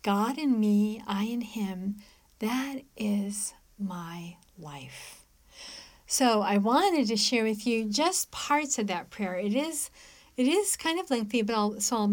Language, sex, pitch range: English, female, 190-255 Hz